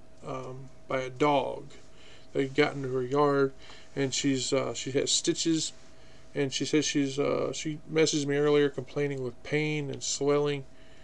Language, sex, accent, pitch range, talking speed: English, male, American, 135-150 Hz, 160 wpm